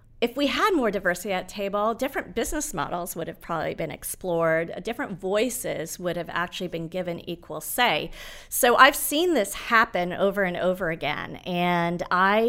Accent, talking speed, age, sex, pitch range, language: American, 175 wpm, 40-59, female, 170-205 Hz, English